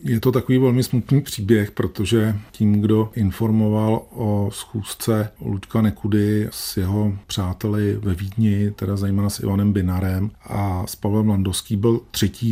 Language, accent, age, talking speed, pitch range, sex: Czech, native, 40-59, 145 wpm, 100-110 Hz, male